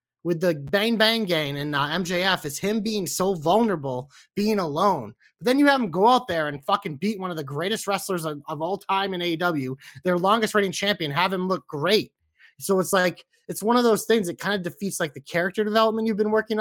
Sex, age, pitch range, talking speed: male, 30-49, 150-200 Hz, 230 wpm